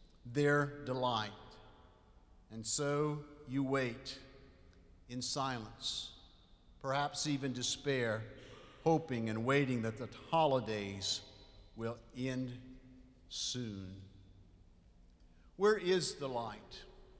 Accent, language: American, English